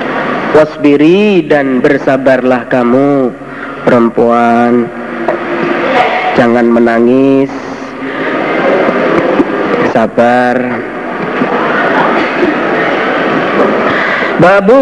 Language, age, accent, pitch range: Indonesian, 40-59, native, 130-190 Hz